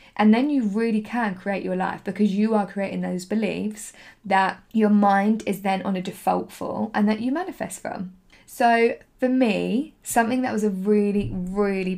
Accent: British